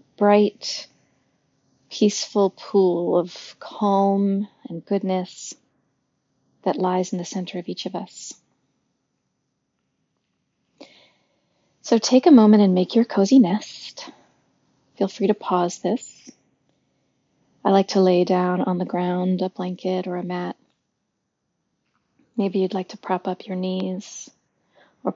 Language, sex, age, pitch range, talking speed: English, female, 40-59, 180-215 Hz, 125 wpm